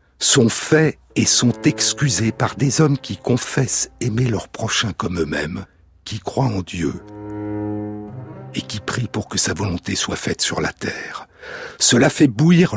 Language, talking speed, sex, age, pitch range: French, 160 wpm, male, 60-79, 100-130 Hz